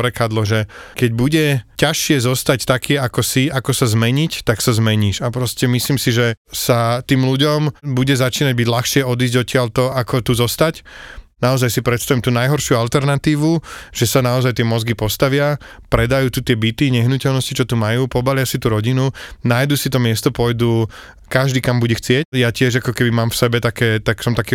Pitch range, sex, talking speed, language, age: 125-145 Hz, male, 185 wpm, Slovak, 20-39